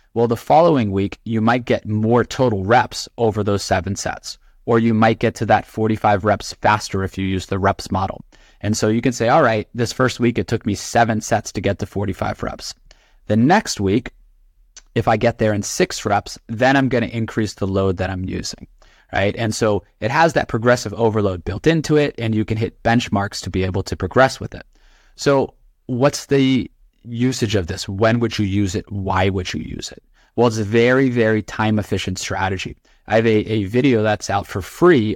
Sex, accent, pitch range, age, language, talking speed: male, American, 100-115 Hz, 30-49, English, 210 wpm